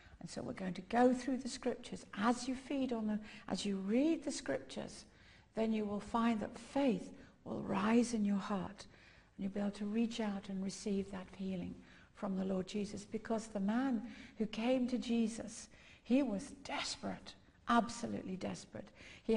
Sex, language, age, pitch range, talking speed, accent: female, English, 60-79, 190-230 Hz, 180 wpm, British